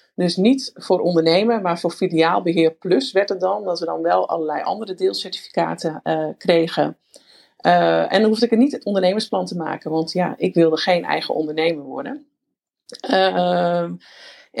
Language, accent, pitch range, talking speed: Dutch, Dutch, 165-210 Hz, 165 wpm